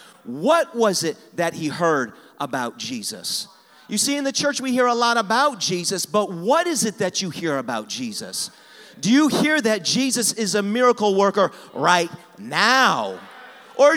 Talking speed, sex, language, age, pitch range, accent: 170 wpm, male, English, 40-59, 185-260 Hz, American